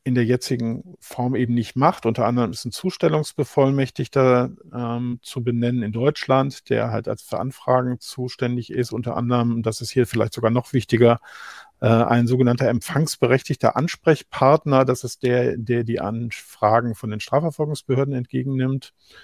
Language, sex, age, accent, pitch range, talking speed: German, male, 50-69, German, 120-135 Hz, 145 wpm